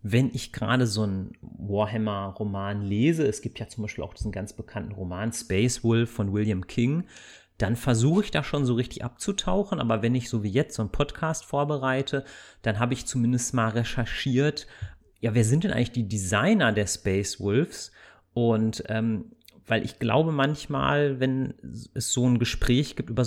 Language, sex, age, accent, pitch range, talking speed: German, male, 30-49, German, 105-130 Hz, 180 wpm